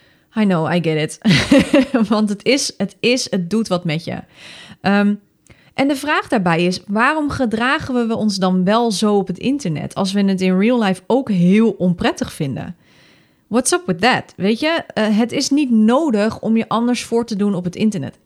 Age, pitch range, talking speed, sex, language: 30-49, 180-240 Hz, 195 wpm, female, Dutch